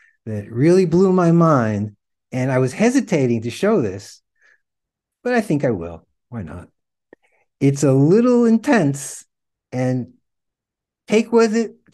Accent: American